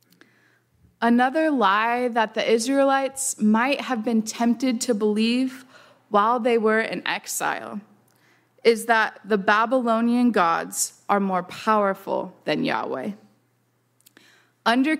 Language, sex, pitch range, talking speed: English, female, 215-260 Hz, 110 wpm